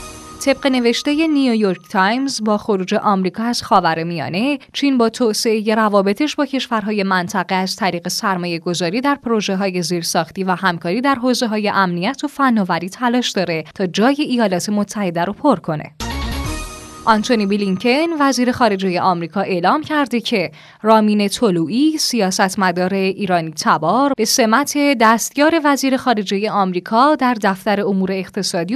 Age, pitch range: 10-29, 185-245 Hz